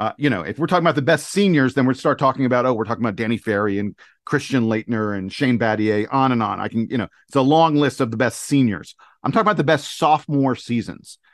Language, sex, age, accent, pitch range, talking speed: English, male, 40-59, American, 115-140 Hz, 260 wpm